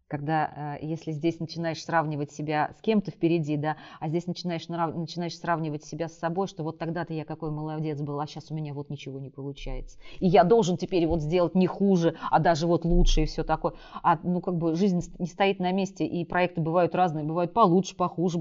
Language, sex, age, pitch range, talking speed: Russian, female, 30-49, 165-220 Hz, 210 wpm